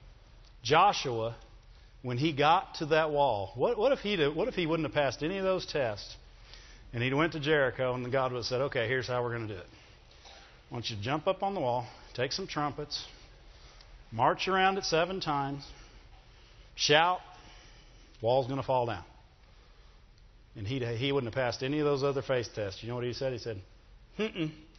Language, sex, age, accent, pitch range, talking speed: English, male, 50-69, American, 130-185 Hz, 200 wpm